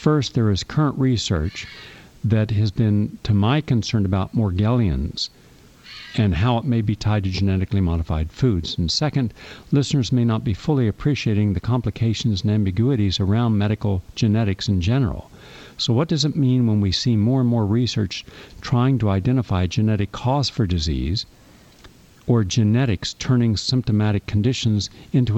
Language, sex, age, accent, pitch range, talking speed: English, male, 50-69, American, 100-125 Hz, 155 wpm